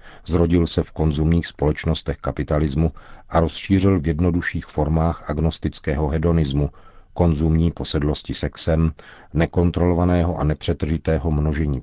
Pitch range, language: 75-90 Hz, Czech